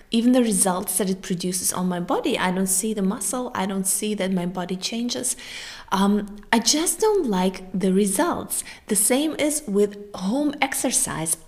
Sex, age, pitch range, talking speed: female, 20-39, 190-220 Hz, 180 wpm